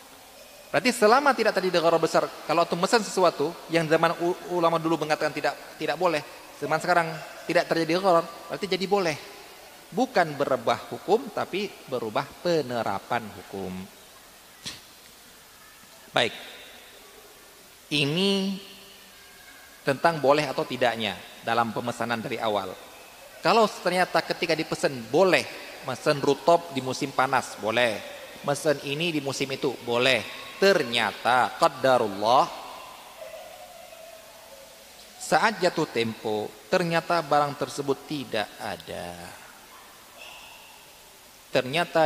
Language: Indonesian